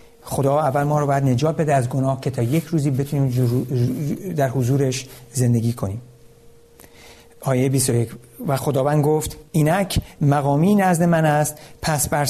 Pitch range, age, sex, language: 130-165 Hz, 60-79, male, Persian